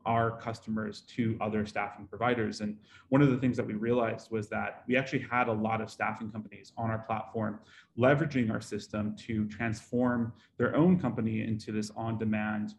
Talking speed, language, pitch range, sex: 180 wpm, English, 110-125 Hz, male